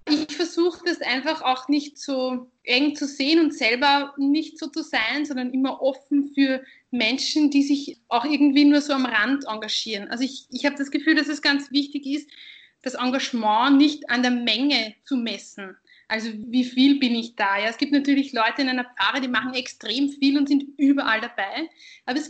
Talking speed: 195 wpm